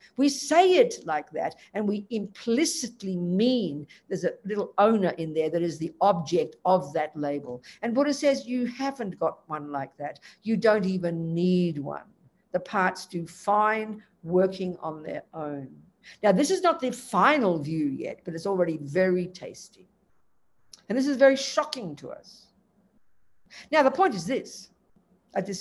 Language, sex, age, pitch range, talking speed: English, female, 60-79, 180-250 Hz, 165 wpm